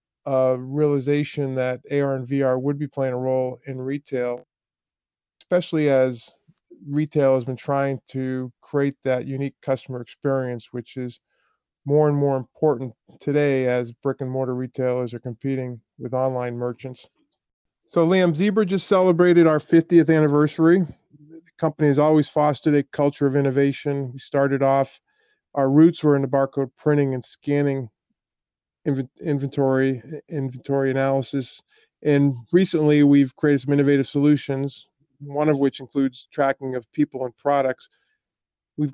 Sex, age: male, 40-59